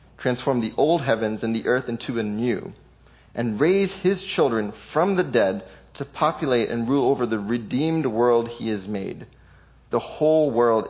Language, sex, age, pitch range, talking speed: English, male, 30-49, 110-135 Hz, 170 wpm